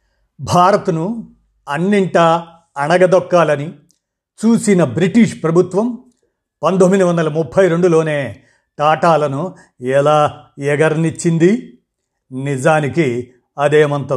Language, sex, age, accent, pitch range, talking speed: Telugu, male, 50-69, native, 140-180 Hz, 65 wpm